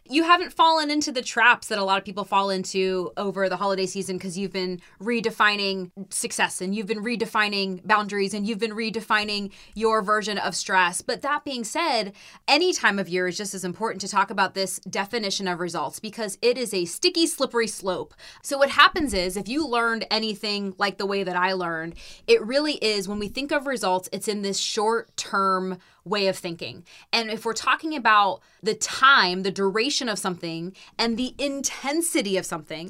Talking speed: 195 wpm